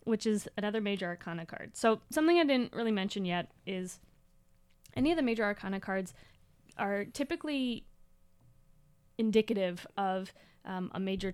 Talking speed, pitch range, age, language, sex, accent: 145 wpm, 180-230 Hz, 20-39, English, female, American